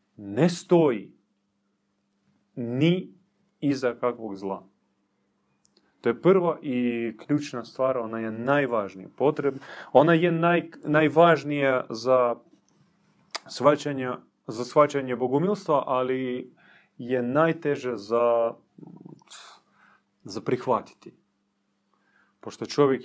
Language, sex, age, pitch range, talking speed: Croatian, male, 30-49, 115-145 Hz, 80 wpm